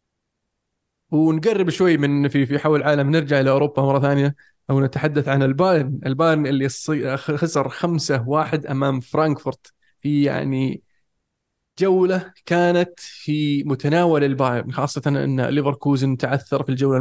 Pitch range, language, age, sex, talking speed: 135-155 Hz, Arabic, 20-39, male, 120 wpm